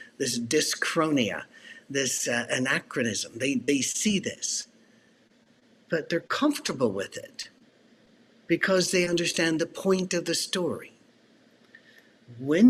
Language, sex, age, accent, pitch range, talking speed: English, male, 60-79, American, 145-205 Hz, 110 wpm